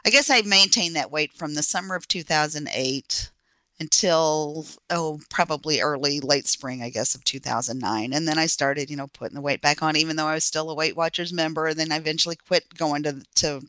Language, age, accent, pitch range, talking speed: English, 40-59, American, 140-160 Hz, 215 wpm